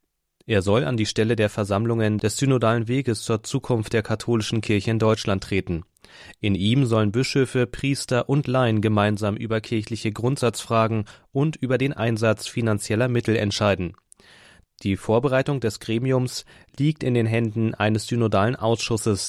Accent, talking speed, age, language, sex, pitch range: German, 145 wpm, 30-49, German, male, 105-125 Hz